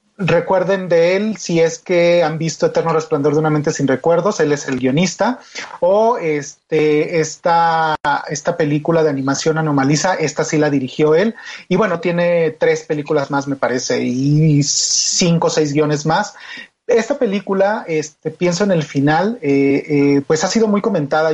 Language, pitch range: Spanish, 155-195 Hz